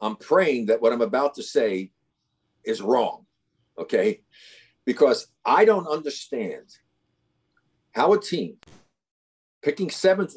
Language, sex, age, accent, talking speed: English, male, 50-69, American, 115 wpm